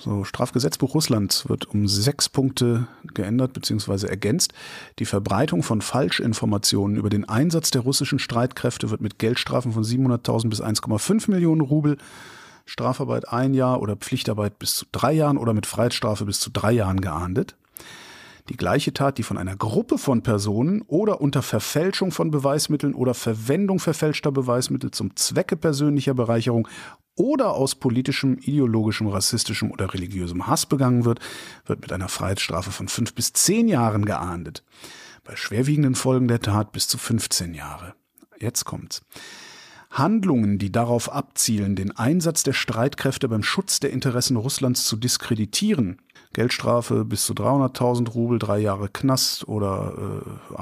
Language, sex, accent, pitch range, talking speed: German, male, German, 105-140 Hz, 145 wpm